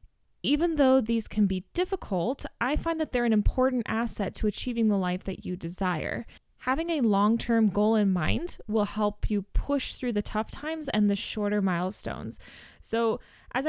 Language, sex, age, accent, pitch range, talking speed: English, female, 20-39, American, 200-230 Hz, 180 wpm